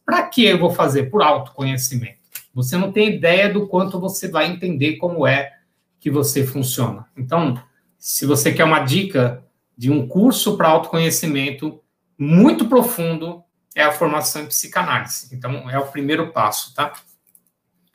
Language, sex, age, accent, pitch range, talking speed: Portuguese, male, 60-79, Brazilian, 130-175 Hz, 150 wpm